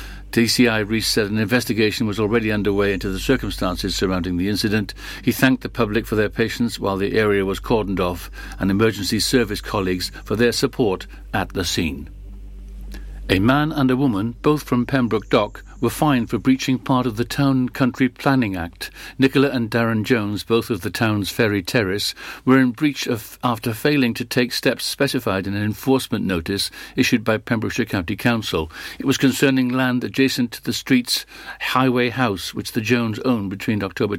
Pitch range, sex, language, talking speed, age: 100-125 Hz, male, English, 180 wpm, 60-79